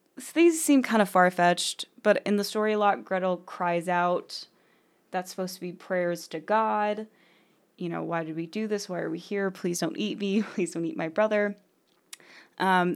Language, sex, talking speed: English, female, 205 wpm